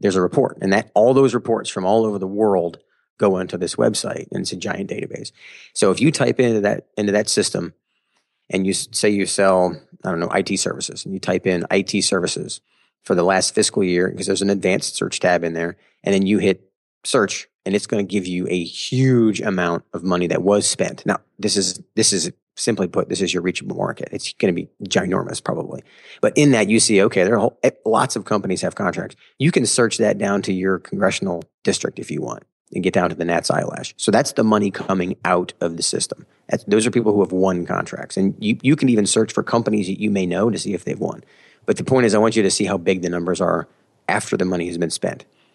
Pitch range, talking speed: 90-105 Hz, 235 wpm